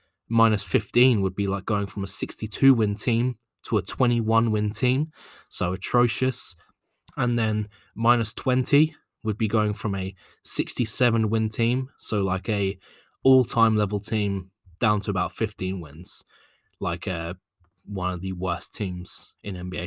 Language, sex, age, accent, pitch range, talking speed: English, male, 20-39, British, 100-120 Hz, 145 wpm